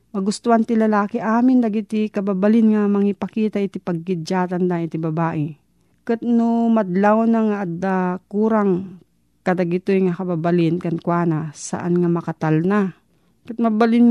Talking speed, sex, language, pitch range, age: 130 wpm, female, Filipino, 180-225 Hz, 40-59